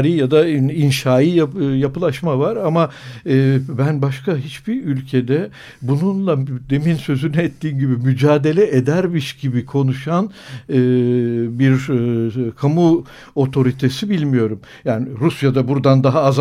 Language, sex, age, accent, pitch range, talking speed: Turkish, male, 60-79, native, 130-160 Hz, 125 wpm